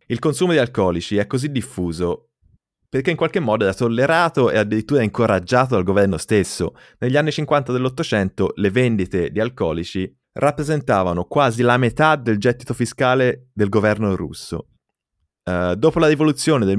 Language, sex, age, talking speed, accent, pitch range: Italian, male, 30-49, 145 wpm, native, 95-120 Hz